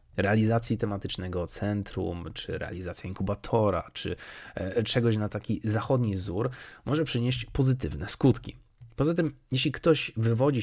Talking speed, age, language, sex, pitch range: 120 wpm, 30-49, Polish, male, 100-130 Hz